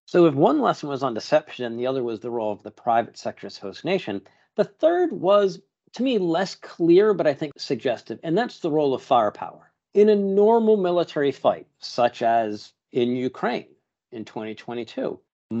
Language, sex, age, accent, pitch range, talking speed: English, male, 50-69, American, 115-165 Hz, 175 wpm